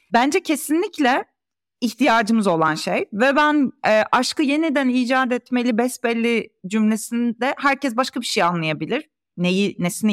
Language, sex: Turkish, female